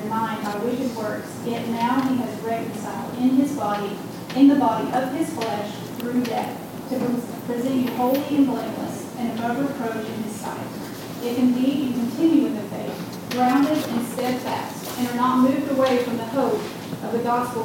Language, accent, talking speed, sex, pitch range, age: English, American, 175 wpm, female, 230-260 Hz, 30-49